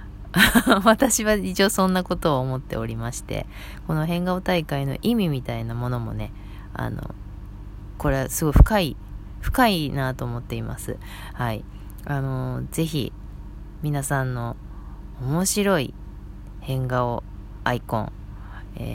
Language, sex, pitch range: Japanese, female, 120-195 Hz